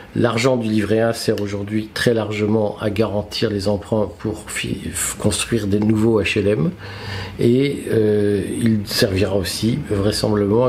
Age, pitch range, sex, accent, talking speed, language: 50-69, 105-130 Hz, male, French, 130 wpm, French